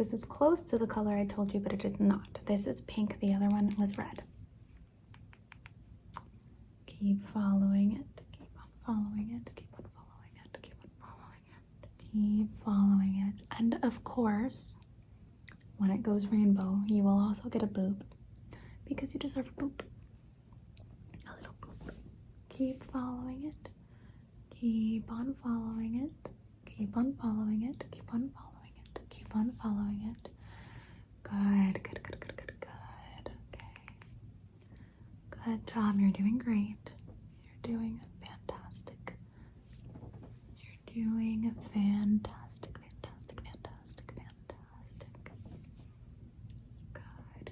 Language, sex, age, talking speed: English, female, 20-39, 125 wpm